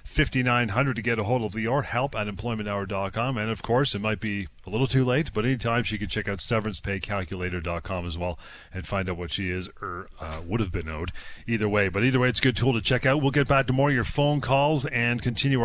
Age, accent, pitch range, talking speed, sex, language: 40-59, American, 100-130 Hz, 245 wpm, male, English